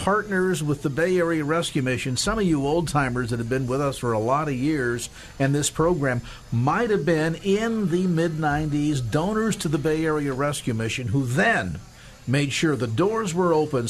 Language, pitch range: English, 110-150 Hz